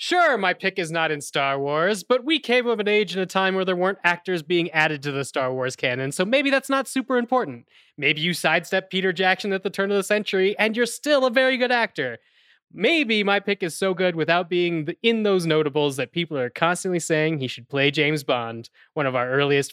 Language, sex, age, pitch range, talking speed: English, male, 20-39, 150-210 Hz, 235 wpm